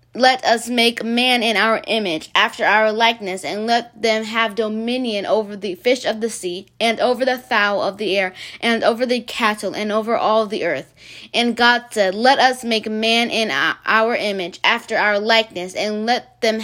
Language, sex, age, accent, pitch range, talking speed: English, female, 20-39, American, 210-235 Hz, 190 wpm